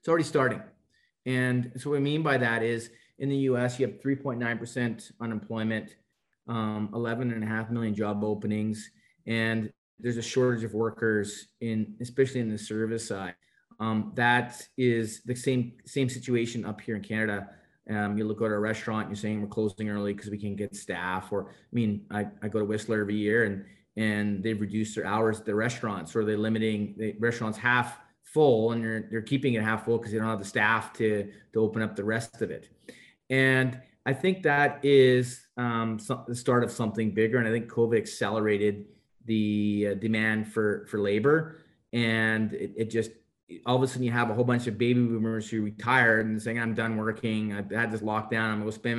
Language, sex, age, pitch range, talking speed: English, male, 30-49, 105-120 Hz, 200 wpm